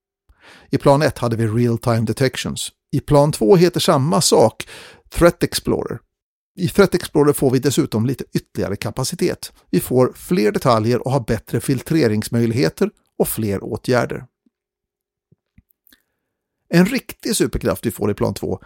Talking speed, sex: 140 wpm, male